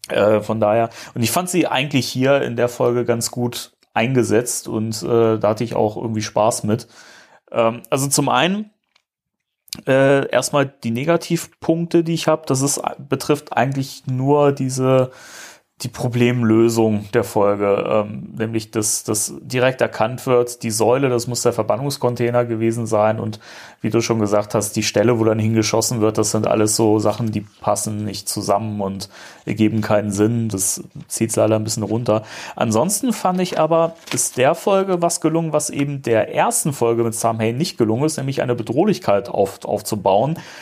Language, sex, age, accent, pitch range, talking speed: German, male, 30-49, German, 110-155 Hz, 170 wpm